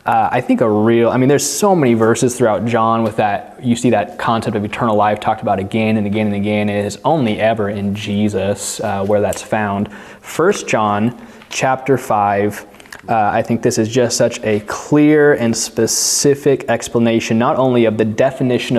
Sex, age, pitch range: male, 20-39, 105-125 Hz